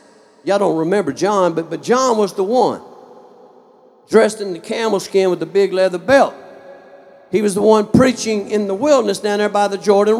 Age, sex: 50-69, male